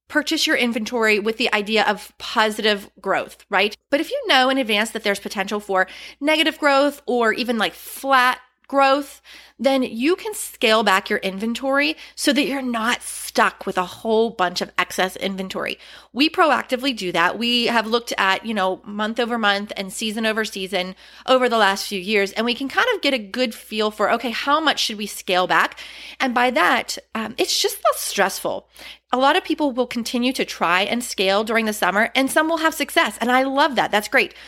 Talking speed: 205 wpm